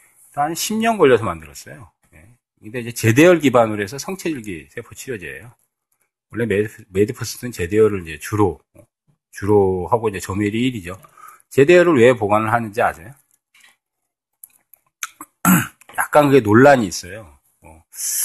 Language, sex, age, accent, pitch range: Korean, male, 40-59, native, 95-135 Hz